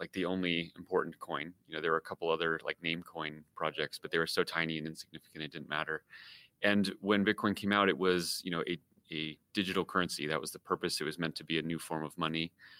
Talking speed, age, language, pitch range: 250 wpm, 30-49, English, 80-90 Hz